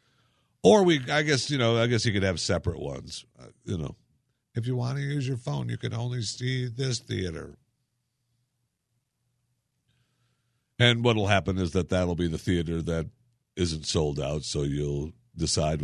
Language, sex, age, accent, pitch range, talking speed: English, male, 60-79, American, 85-125 Hz, 170 wpm